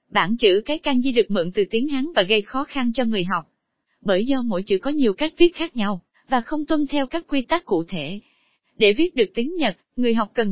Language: Vietnamese